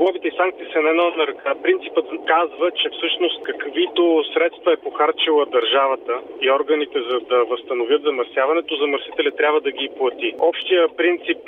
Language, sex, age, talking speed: Bulgarian, male, 30-49, 145 wpm